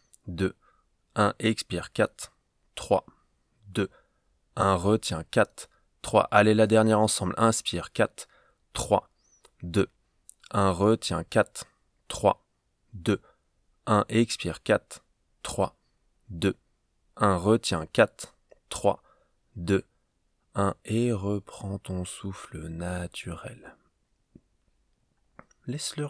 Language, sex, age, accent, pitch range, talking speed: French, male, 20-39, French, 95-120 Hz, 90 wpm